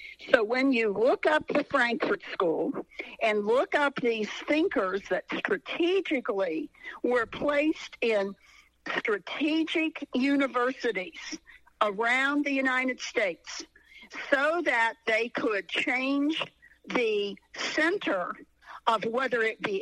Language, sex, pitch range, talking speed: English, female, 220-310 Hz, 105 wpm